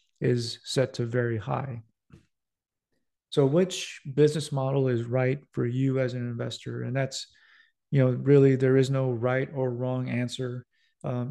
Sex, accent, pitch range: male, American, 125-145 Hz